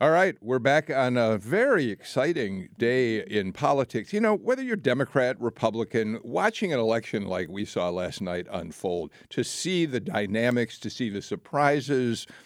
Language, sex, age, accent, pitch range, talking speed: English, male, 50-69, American, 105-150 Hz, 165 wpm